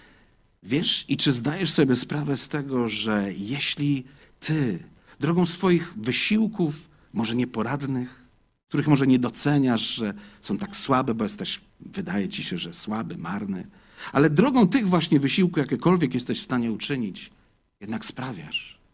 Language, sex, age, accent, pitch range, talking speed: Polish, male, 50-69, native, 110-160 Hz, 140 wpm